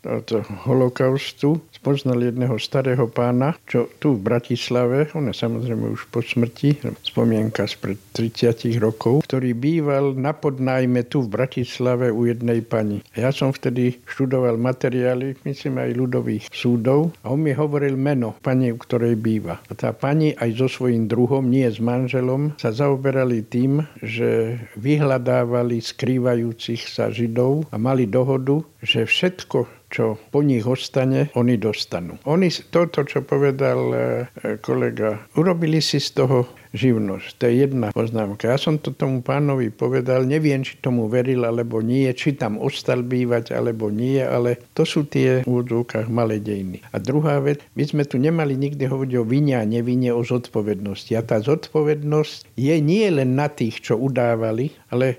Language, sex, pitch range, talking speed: Slovak, male, 115-140 Hz, 155 wpm